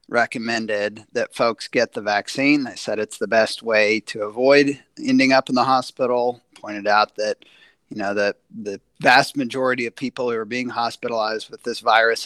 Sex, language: male, English